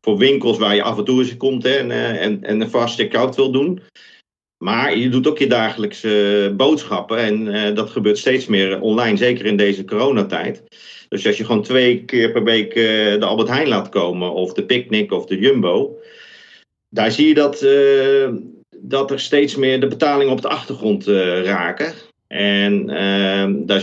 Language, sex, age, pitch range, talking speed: Dutch, male, 40-59, 105-130 Hz, 190 wpm